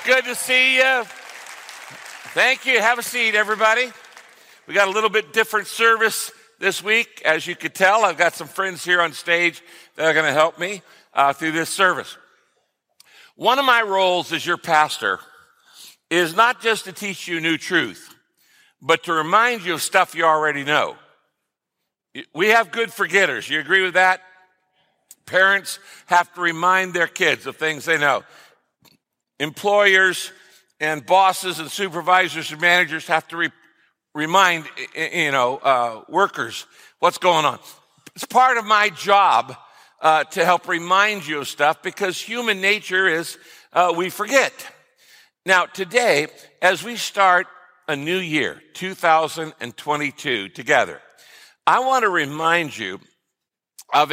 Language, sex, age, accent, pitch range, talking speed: English, male, 60-79, American, 160-205 Hz, 145 wpm